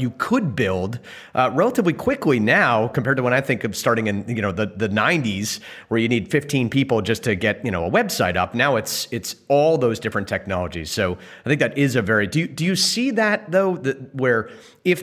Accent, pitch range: American, 105-135 Hz